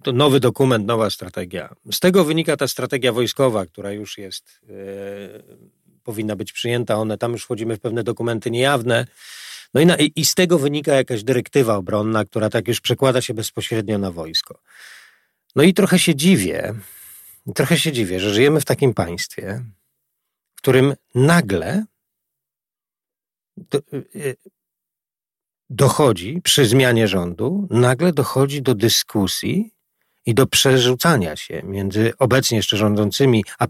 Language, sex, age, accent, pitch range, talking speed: Polish, male, 40-59, native, 110-155 Hz, 140 wpm